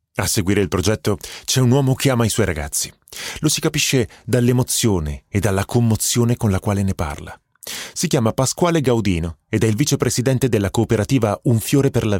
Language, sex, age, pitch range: Italian, male, 30-49, 95-135 Hz